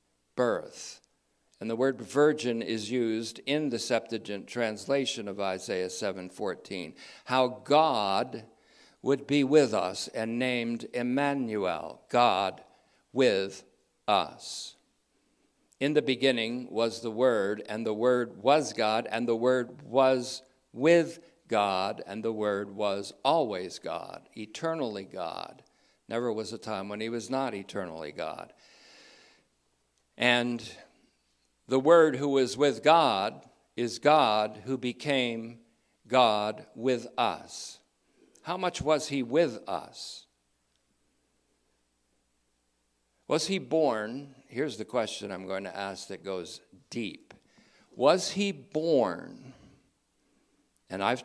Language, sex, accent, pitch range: English, male, American, 100-135 Hz